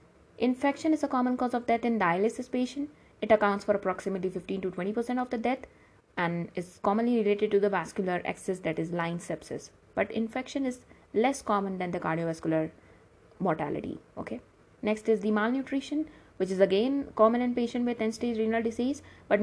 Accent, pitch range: Indian, 185-235 Hz